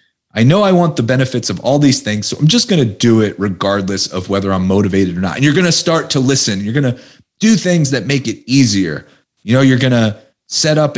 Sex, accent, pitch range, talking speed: male, American, 110-150 Hz, 270 wpm